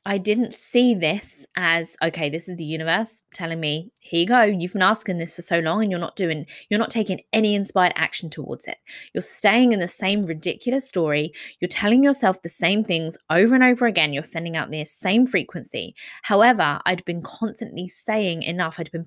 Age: 20-39